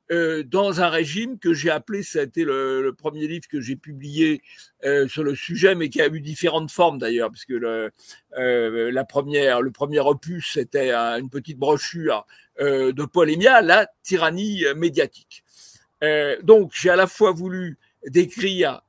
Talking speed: 170 wpm